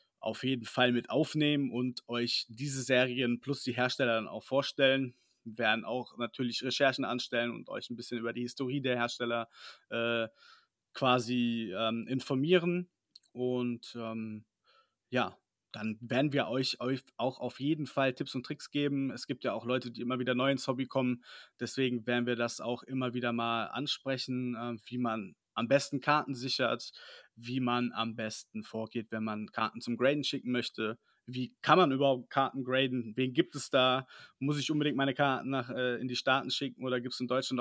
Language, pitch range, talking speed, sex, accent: German, 120-135 Hz, 185 wpm, male, German